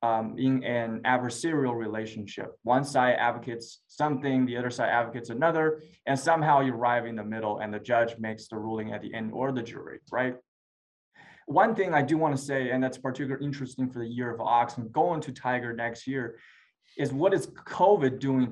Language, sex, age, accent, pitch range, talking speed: English, male, 20-39, American, 115-135 Hz, 195 wpm